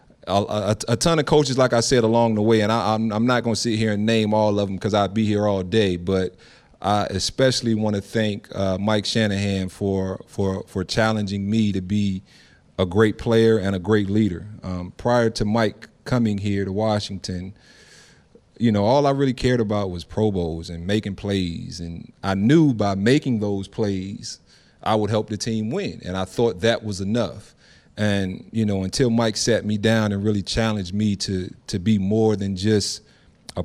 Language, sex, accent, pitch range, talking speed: English, male, American, 95-110 Hz, 200 wpm